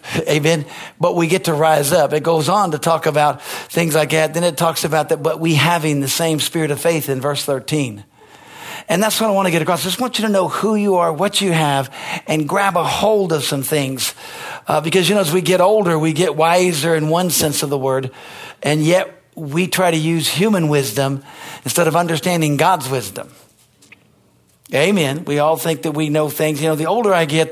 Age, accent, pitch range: 50-69, American, 145-180 Hz